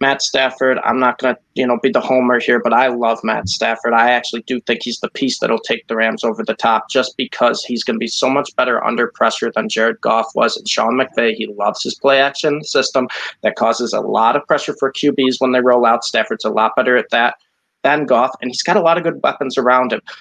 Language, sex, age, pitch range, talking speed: English, male, 20-39, 120-140 Hz, 250 wpm